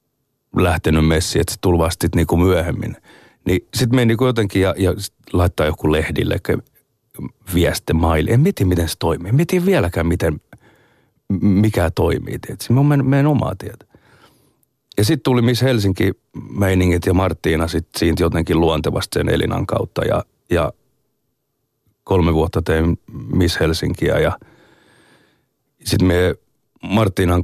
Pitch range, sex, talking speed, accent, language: 85-130 Hz, male, 135 wpm, native, Finnish